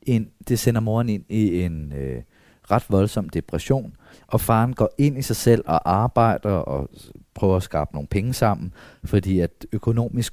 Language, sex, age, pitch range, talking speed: Danish, male, 30-49, 85-110 Hz, 175 wpm